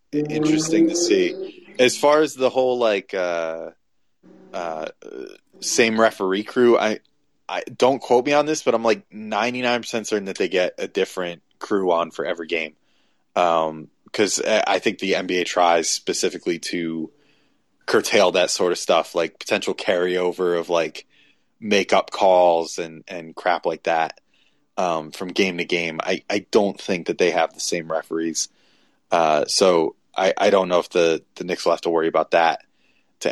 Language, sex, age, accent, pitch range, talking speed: English, male, 20-39, American, 90-115 Hz, 170 wpm